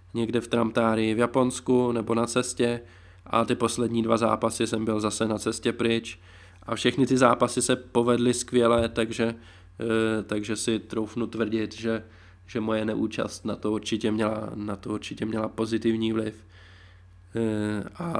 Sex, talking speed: male, 140 wpm